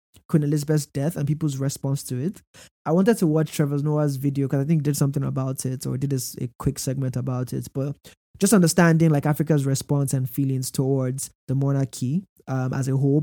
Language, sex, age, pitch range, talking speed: English, male, 20-39, 135-155 Hz, 210 wpm